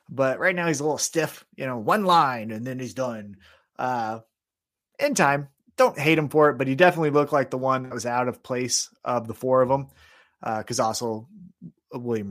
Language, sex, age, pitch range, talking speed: English, male, 30-49, 115-185 Hz, 215 wpm